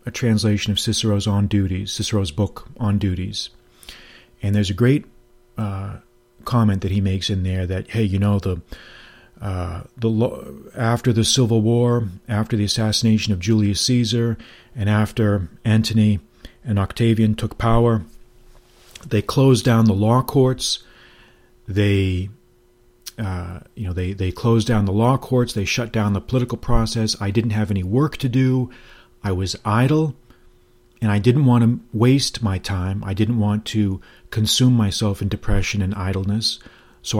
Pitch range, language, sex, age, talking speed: 100-120 Hz, English, male, 40-59, 155 wpm